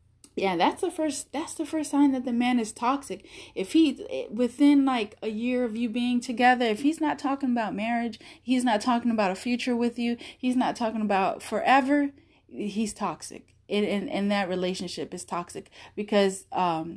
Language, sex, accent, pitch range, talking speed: English, female, American, 190-245 Hz, 185 wpm